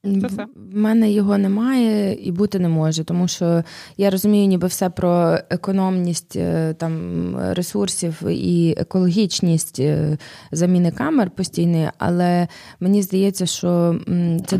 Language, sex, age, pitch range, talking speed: Ukrainian, female, 20-39, 165-195 Hz, 115 wpm